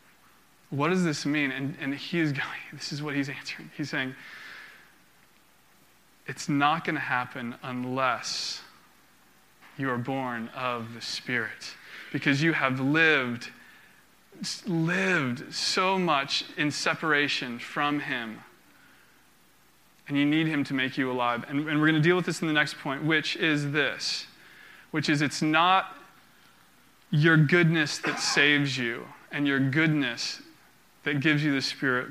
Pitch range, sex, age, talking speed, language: 140-180 Hz, male, 20-39, 145 wpm, English